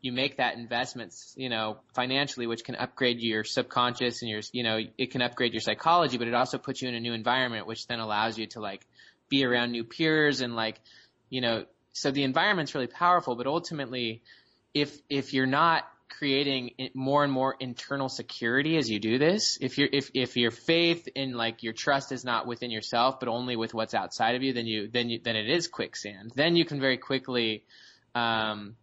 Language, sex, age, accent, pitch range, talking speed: English, male, 20-39, American, 115-135 Hz, 210 wpm